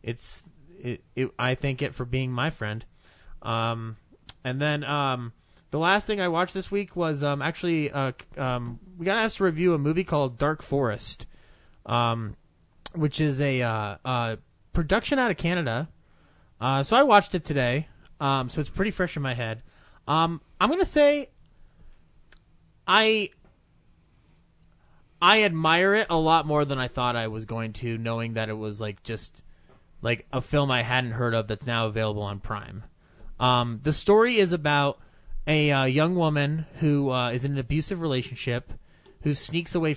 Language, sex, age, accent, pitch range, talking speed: English, male, 30-49, American, 115-155 Hz, 175 wpm